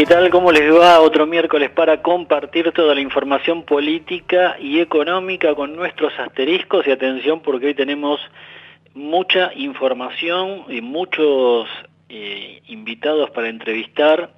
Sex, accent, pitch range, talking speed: male, Argentinian, 125-155 Hz, 130 wpm